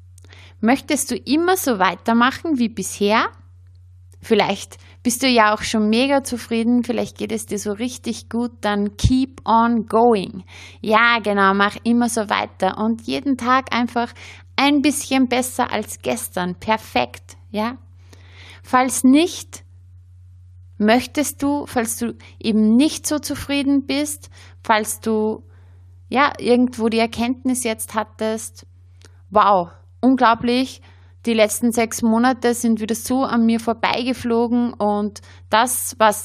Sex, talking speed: female, 125 wpm